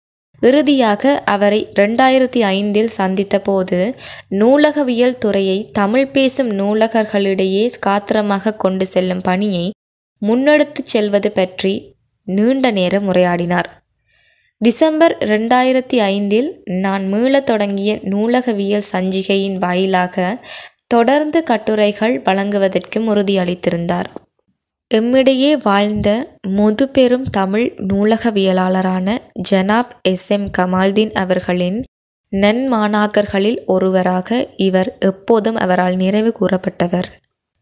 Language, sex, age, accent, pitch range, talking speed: Tamil, female, 20-39, native, 190-235 Hz, 80 wpm